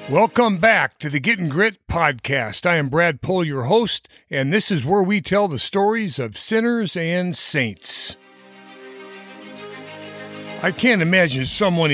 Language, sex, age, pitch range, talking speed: English, male, 50-69, 125-185 Hz, 150 wpm